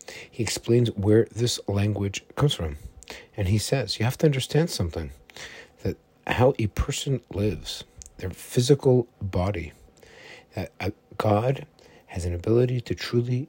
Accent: American